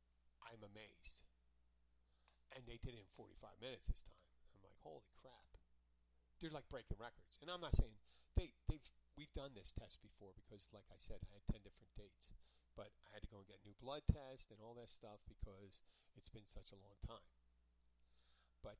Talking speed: 200 wpm